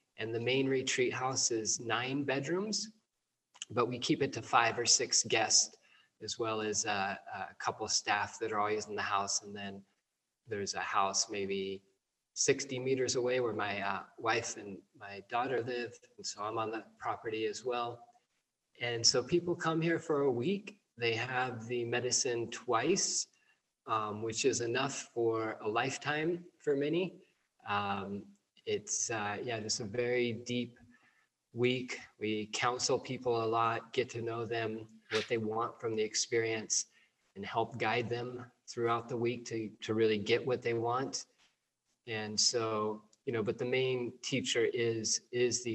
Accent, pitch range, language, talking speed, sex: American, 110-130 Hz, English, 165 wpm, male